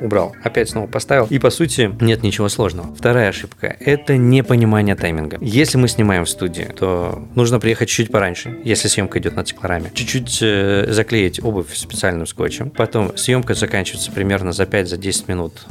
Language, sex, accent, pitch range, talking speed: Russian, male, native, 100-125 Hz, 170 wpm